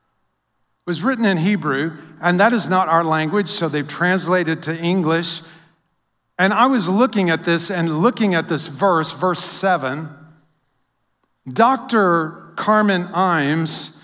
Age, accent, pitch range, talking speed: 50-69, American, 170-220 Hz, 130 wpm